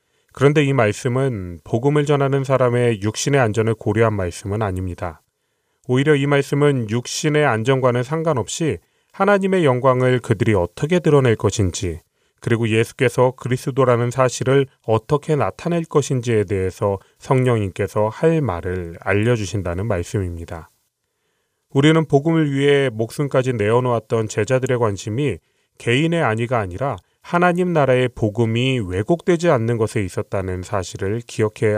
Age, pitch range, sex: 30-49, 105-145 Hz, male